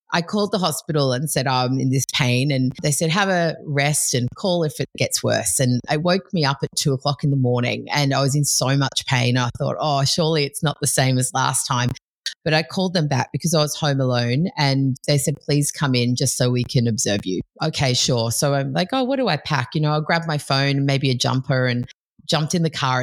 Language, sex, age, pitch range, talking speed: English, female, 30-49, 125-155 Hz, 255 wpm